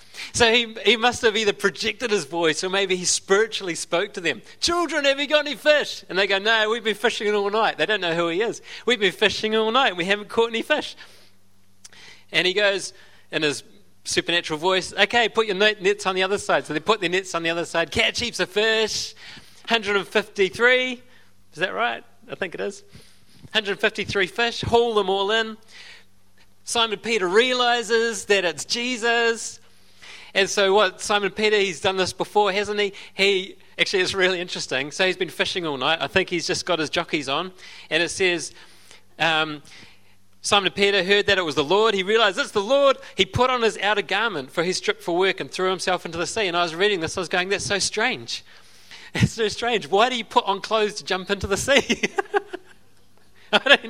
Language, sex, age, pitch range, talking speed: English, male, 30-49, 175-225 Hz, 205 wpm